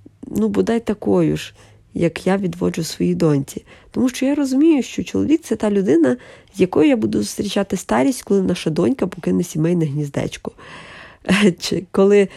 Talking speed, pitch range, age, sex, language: 150 wpm, 160-205 Hz, 20-39, female, Ukrainian